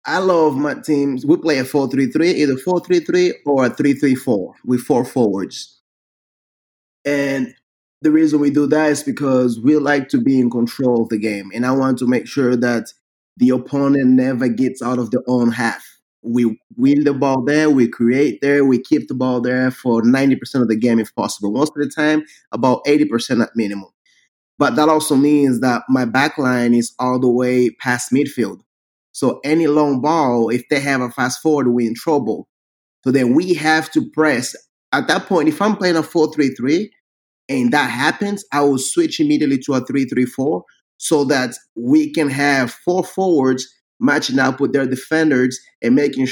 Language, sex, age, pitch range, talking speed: English, male, 20-39, 125-150 Hz, 190 wpm